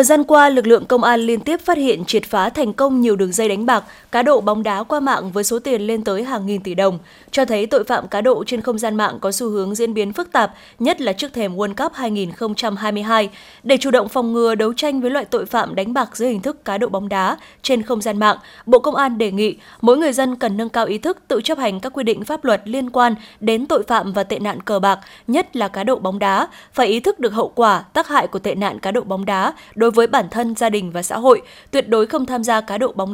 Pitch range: 210-265 Hz